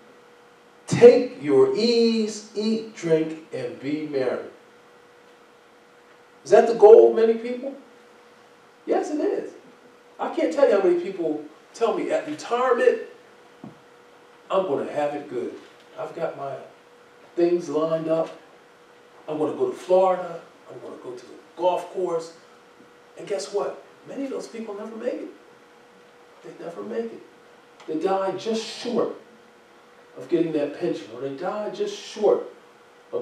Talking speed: 150 wpm